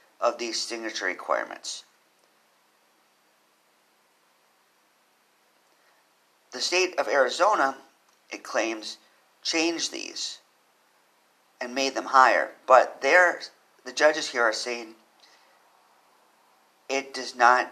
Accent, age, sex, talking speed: American, 50-69, male, 90 wpm